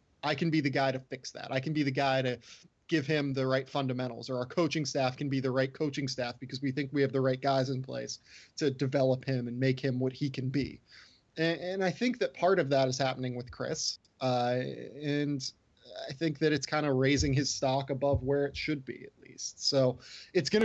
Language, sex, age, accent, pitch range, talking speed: English, male, 20-39, American, 130-150 Hz, 240 wpm